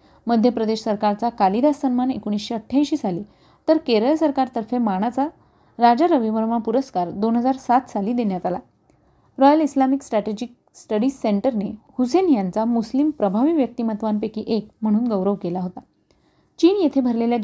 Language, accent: Marathi, native